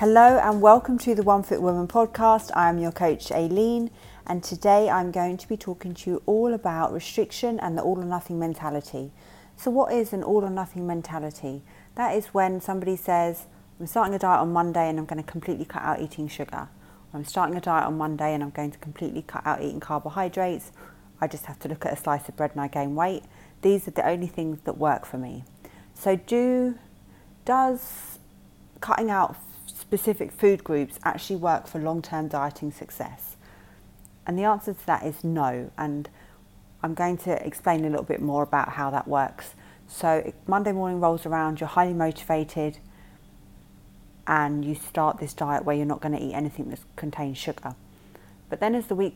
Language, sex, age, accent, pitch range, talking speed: English, female, 30-49, British, 150-185 Hz, 195 wpm